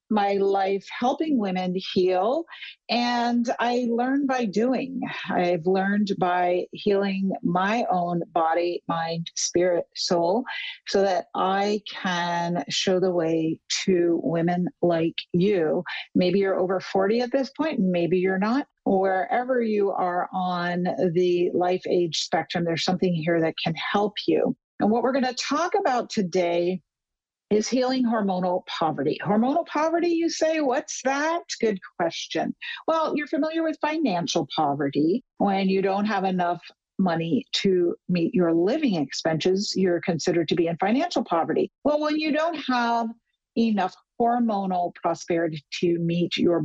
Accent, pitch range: American, 175-245 Hz